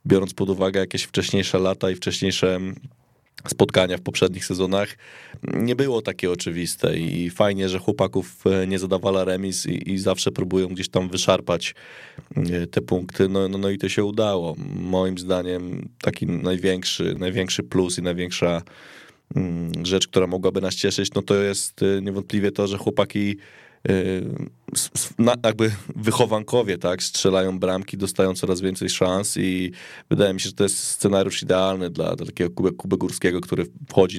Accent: native